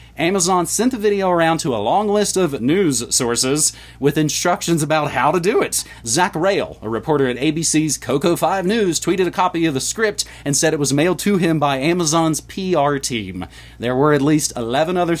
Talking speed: 195 wpm